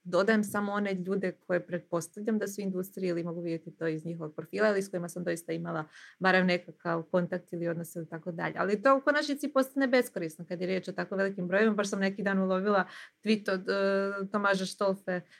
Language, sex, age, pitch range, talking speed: Croatian, female, 20-39, 170-210 Hz, 205 wpm